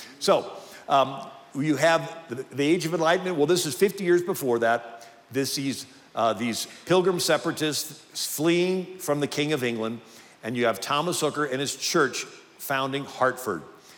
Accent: American